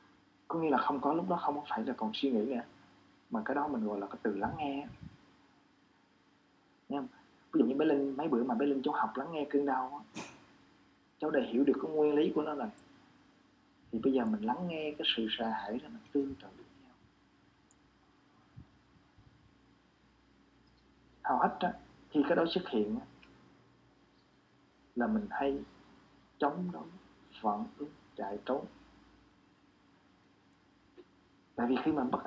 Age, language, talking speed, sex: 20-39, Vietnamese, 170 wpm, male